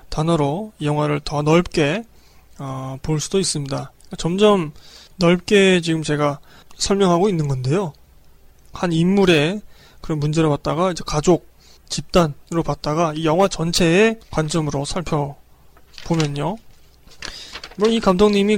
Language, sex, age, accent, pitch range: Korean, male, 20-39, native, 150-195 Hz